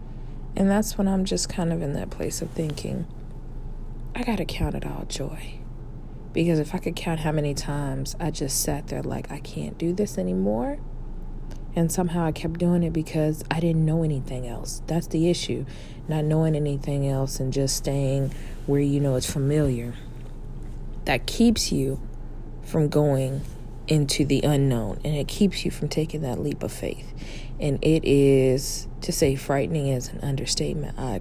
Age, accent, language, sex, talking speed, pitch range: 40-59, American, English, female, 175 wpm, 130-155 Hz